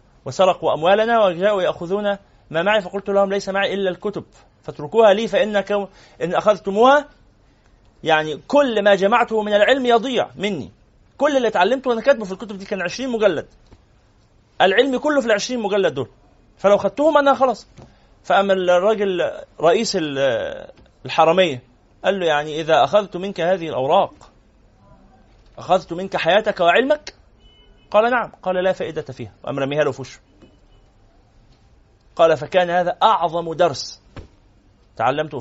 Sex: male